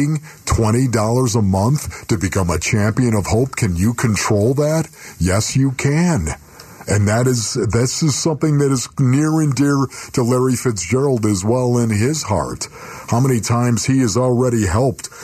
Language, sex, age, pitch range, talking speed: English, male, 50-69, 105-140 Hz, 165 wpm